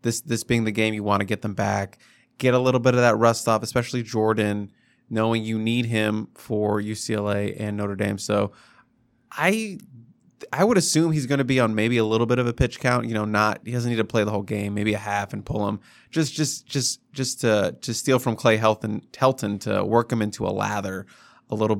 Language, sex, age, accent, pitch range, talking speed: English, male, 20-39, American, 105-120 Hz, 235 wpm